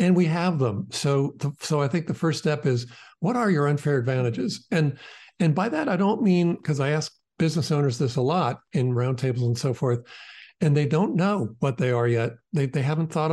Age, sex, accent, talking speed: 50-69, male, American, 220 wpm